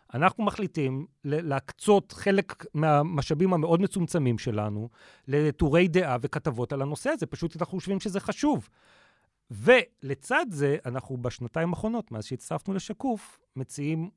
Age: 30-49